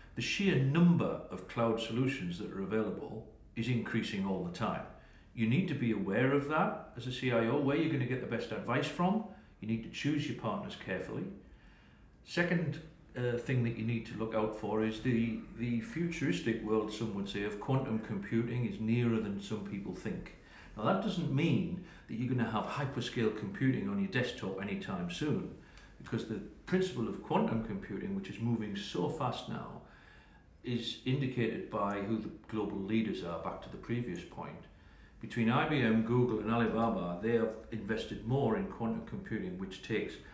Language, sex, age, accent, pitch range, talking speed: English, male, 50-69, British, 110-140 Hz, 180 wpm